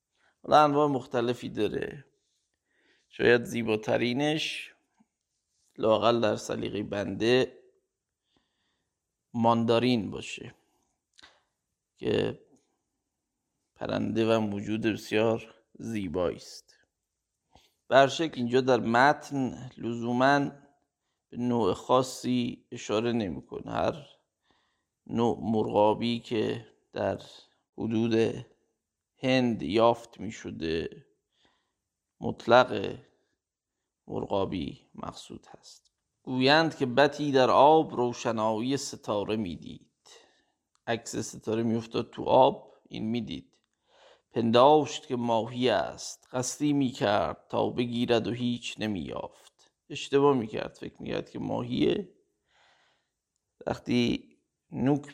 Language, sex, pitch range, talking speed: Persian, male, 115-135 Hz, 90 wpm